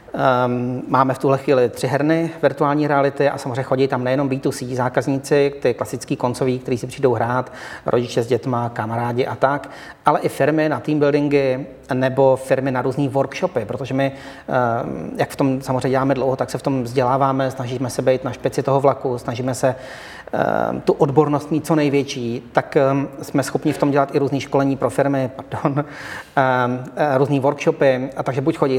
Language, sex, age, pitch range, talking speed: Czech, male, 40-59, 130-145 Hz, 175 wpm